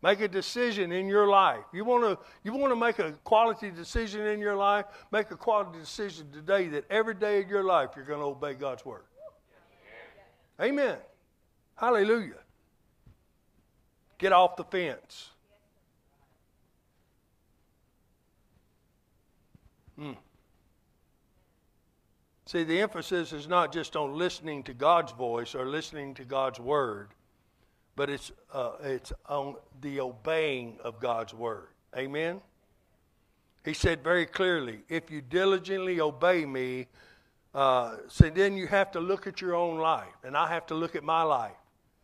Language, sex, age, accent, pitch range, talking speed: English, male, 60-79, American, 140-195 Hz, 135 wpm